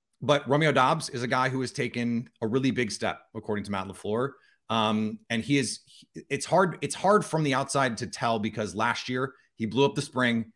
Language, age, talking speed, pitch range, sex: English, 30-49, 215 wpm, 110-140 Hz, male